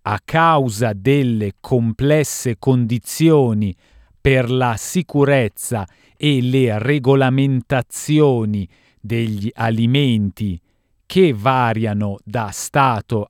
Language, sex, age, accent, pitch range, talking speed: Italian, male, 40-59, native, 105-150 Hz, 75 wpm